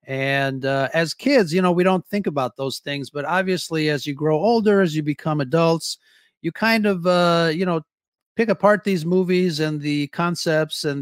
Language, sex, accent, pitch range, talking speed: English, male, American, 145-185 Hz, 195 wpm